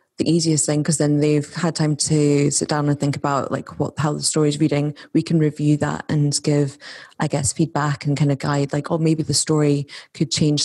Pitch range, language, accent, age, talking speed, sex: 145-155 Hz, English, British, 20-39, 230 wpm, female